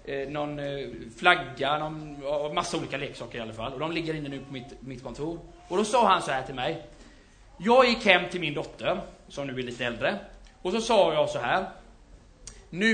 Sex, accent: male, native